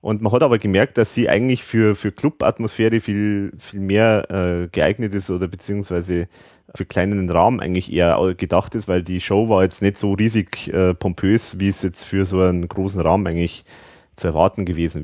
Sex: male